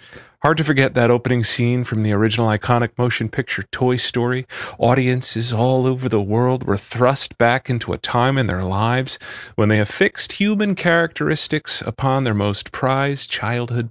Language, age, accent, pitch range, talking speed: English, 40-59, American, 110-145 Hz, 165 wpm